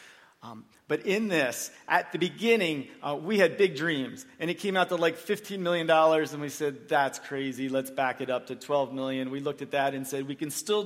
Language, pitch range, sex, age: English, 130-160 Hz, male, 40-59